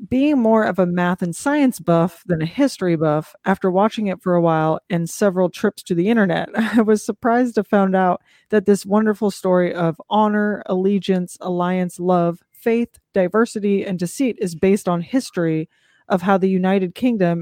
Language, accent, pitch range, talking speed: English, American, 175-210 Hz, 180 wpm